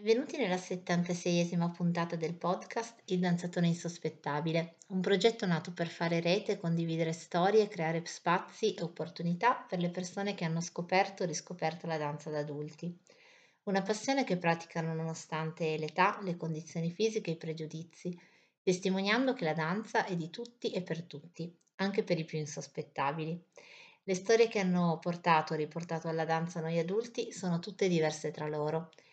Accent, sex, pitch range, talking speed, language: native, female, 160-190 Hz, 160 wpm, Italian